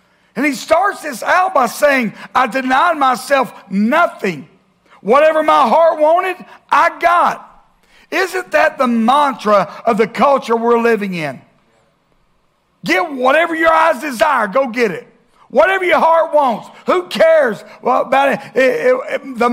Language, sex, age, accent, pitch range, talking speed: English, male, 60-79, American, 175-275 Hz, 145 wpm